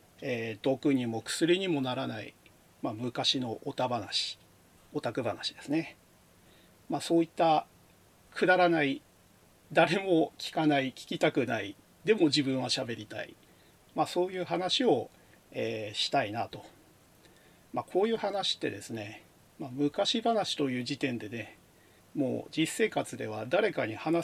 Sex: male